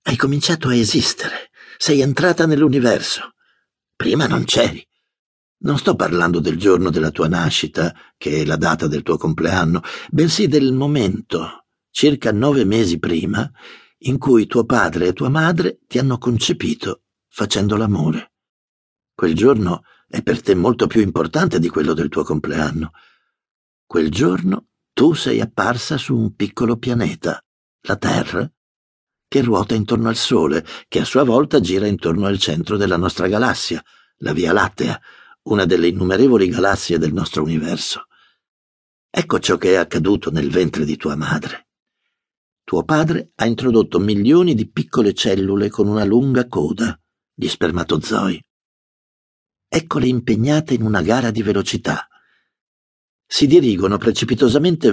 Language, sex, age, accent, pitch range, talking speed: Italian, male, 60-79, native, 95-135 Hz, 140 wpm